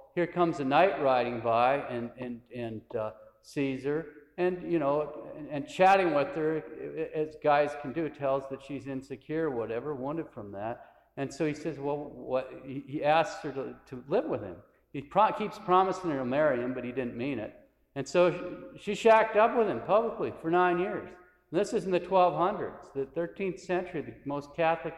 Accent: American